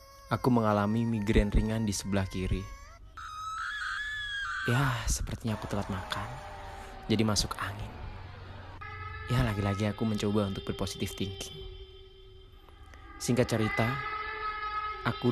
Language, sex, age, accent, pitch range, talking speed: Indonesian, male, 20-39, native, 95-120 Hz, 100 wpm